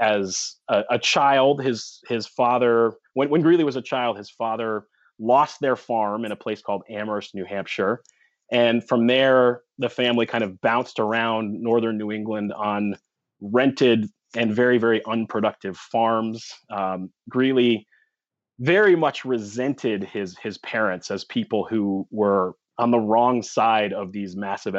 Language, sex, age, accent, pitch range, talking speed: English, male, 30-49, American, 100-125 Hz, 150 wpm